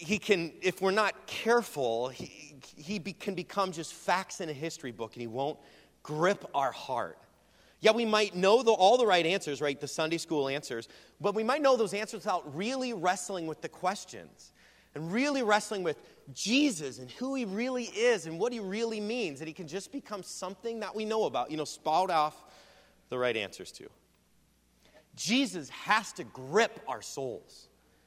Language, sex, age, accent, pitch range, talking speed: English, male, 30-49, American, 135-210 Hz, 190 wpm